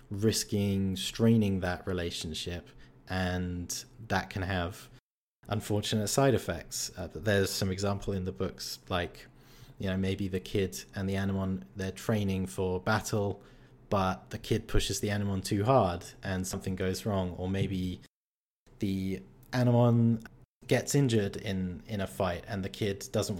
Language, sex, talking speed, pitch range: English, male, 145 wpm, 95-115 Hz